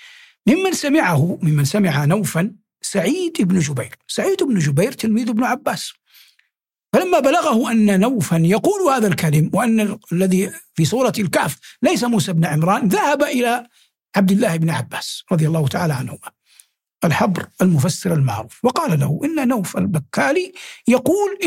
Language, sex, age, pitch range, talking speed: Arabic, male, 60-79, 170-250 Hz, 135 wpm